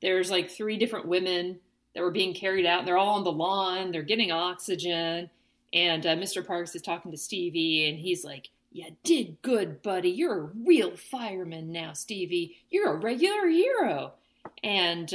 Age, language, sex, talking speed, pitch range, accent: 40-59, English, female, 180 wpm, 175-260 Hz, American